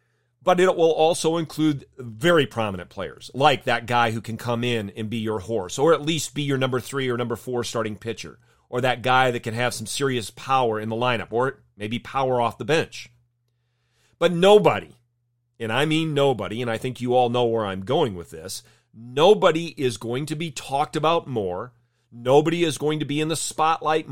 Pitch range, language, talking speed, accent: 115-140 Hz, English, 205 wpm, American